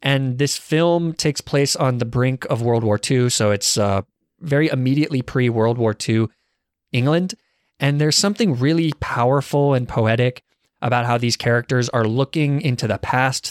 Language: English